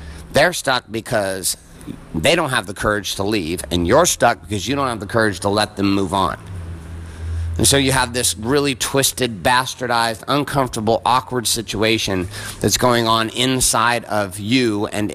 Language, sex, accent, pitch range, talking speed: English, male, American, 100-125 Hz, 165 wpm